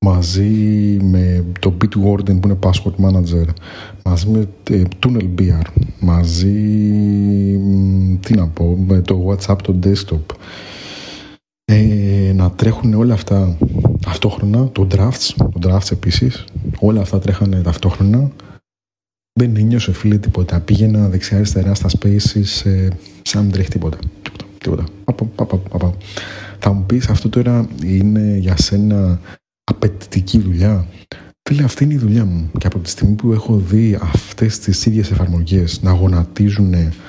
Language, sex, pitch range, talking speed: Greek, male, 95-110 Hz, 140 wpm